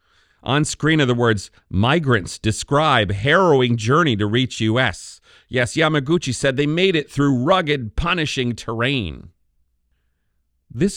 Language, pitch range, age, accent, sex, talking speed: English, 90-135 Hz, 40-59, American, male, 125 wpm